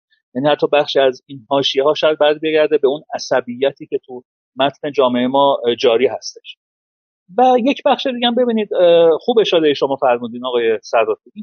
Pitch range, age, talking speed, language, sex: 140-235 Hz, 40-59, 165 wpm, Persian, male